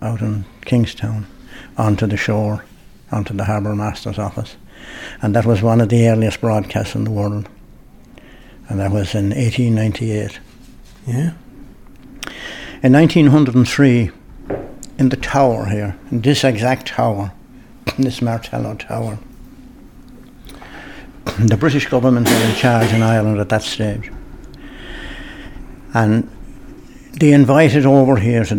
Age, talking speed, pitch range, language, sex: 60-79, 135 wpm, 105-125 Hz, English, male